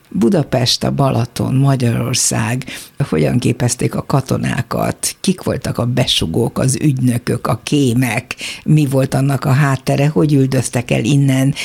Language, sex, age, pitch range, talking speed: Hungarian, female, 60-79, 125-145 Hz, 130 wpm